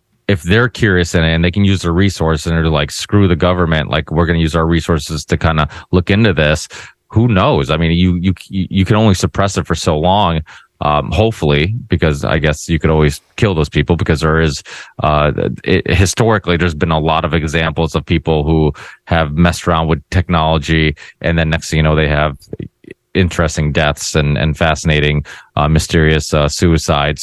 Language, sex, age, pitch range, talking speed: English, male, 30-49, 80-95 Hz, 205 wpm